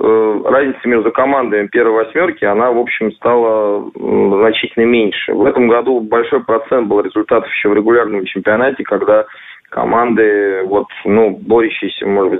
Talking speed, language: 140 wpm, Russian